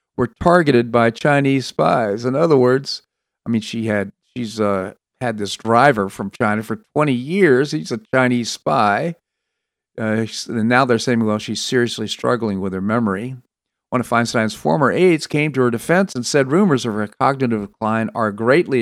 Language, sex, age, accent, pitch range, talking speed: English, male, 50-69, American, 110-140 Hz, 180 wpm